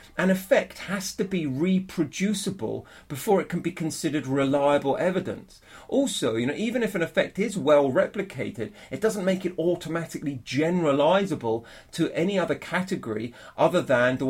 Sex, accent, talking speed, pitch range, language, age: male, British, 150 wpm, 125-180 Hz, English, 40-59